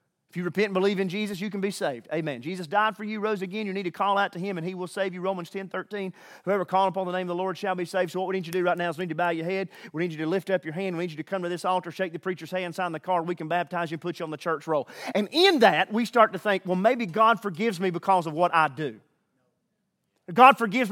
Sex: male